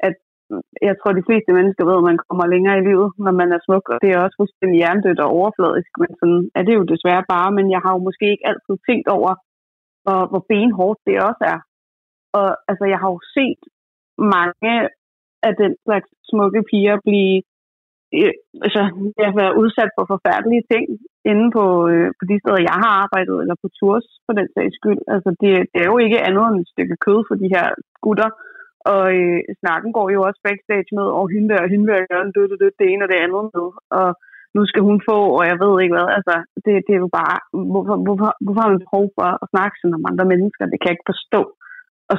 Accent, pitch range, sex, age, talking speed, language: native, 180-210 Hz, female, 30-49, 215 wpm, Danish